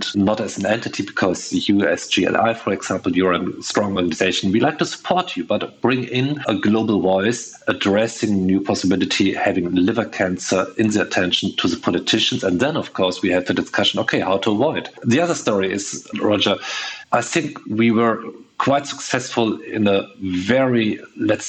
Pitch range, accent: 100-115 Hz, German